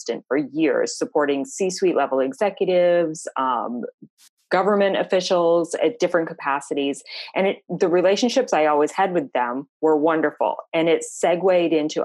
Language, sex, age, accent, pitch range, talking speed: English, female, 30-49, American, 140-175 Hz, 135 wpm